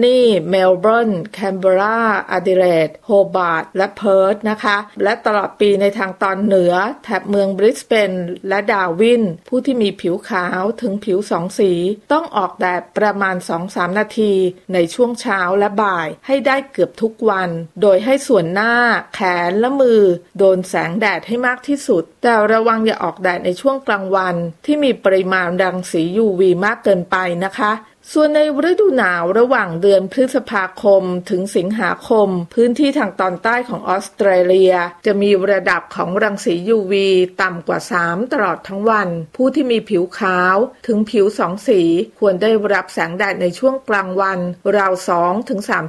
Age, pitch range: 30-49, 185-230 Hz